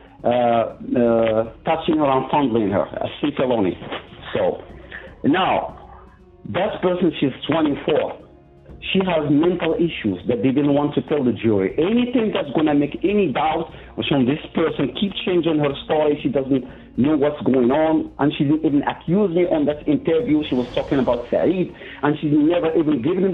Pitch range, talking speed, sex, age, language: 140-180 Hz, 170 wpm, male, 60-79, English